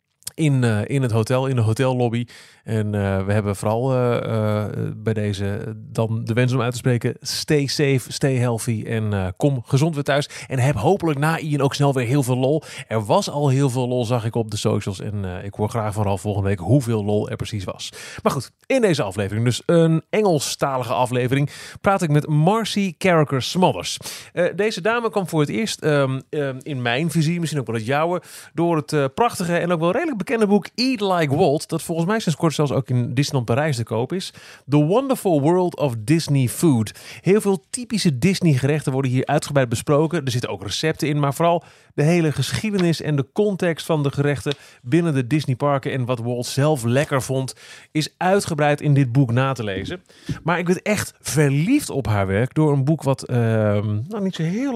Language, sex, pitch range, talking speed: Dutch, male, 120-160 Hz, 210 wpm